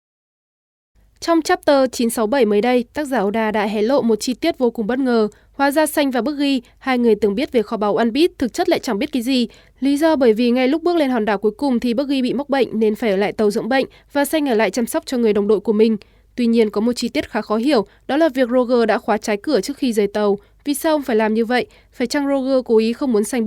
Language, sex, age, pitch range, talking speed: Vietnamese, female, 20-39, 215-260 Hz, 290 wpm